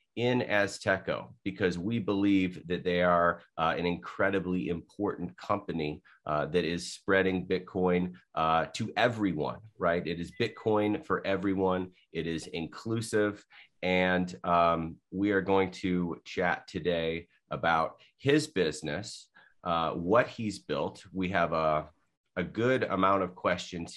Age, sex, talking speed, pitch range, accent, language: 30-49, male, 135 wpm, 90-140 Hz, American, English